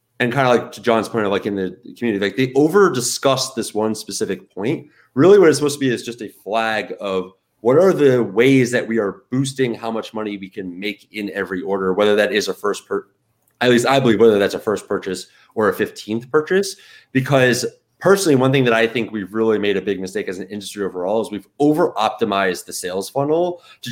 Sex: male